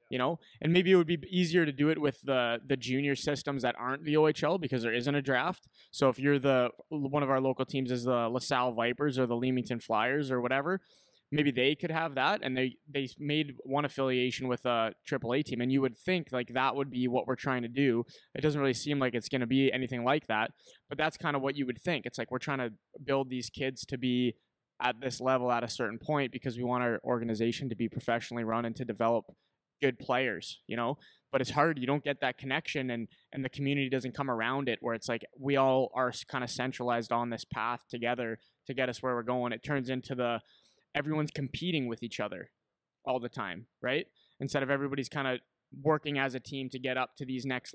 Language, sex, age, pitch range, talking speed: English, male, 20-39, 125-140 Hz, 235 wpm